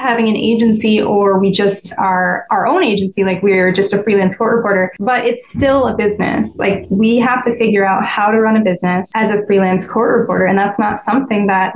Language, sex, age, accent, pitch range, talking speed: English, female, 10-29, American, 200-245 Hz, 220 wpm